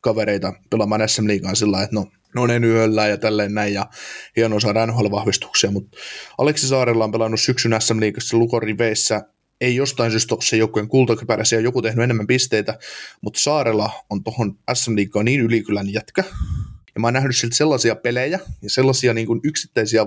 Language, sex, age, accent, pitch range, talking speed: Finnish, male, 20-39, native, 105-125 Hz, 165 wpm